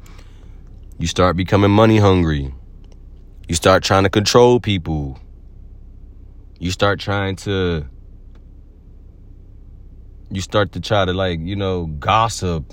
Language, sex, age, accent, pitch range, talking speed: English, male, 30-49, American, 90-120 Hz, 115 wpm